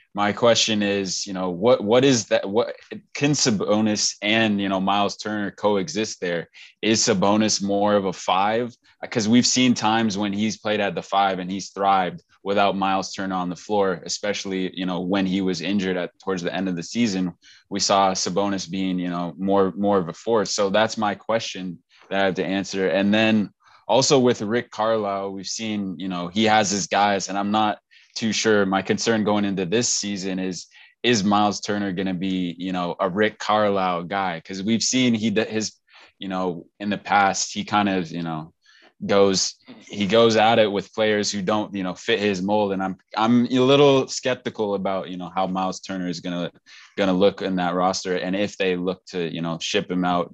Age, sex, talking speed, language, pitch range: 20-39, male, 205 wpm, English, 95-105 Hz